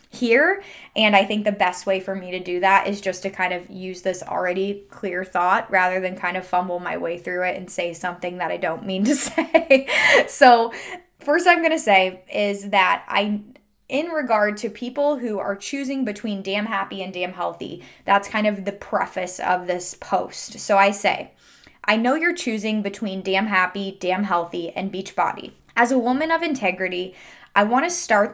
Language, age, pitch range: English, 20-39, 190-245 Hz